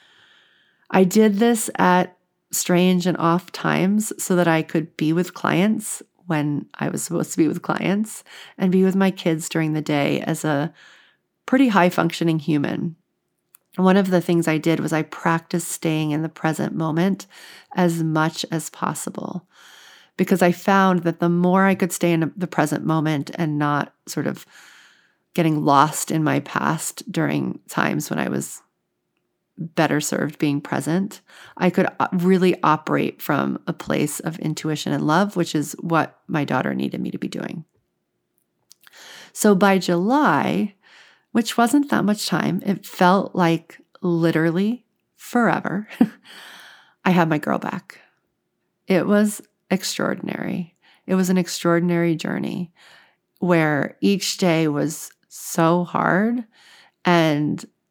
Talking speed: 145 wpm